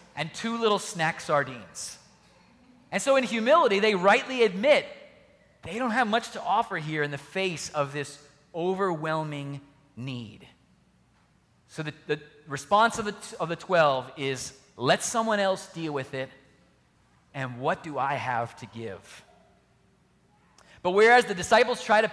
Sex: male